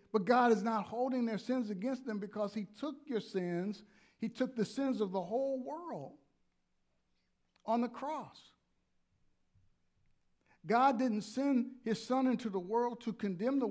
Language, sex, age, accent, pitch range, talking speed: English, male, 50-69, American, 185-245 Hz, 160 wpm